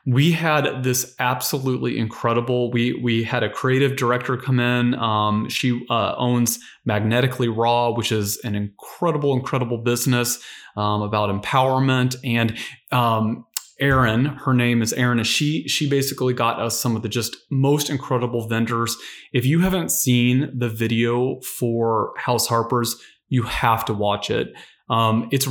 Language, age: English, 30-49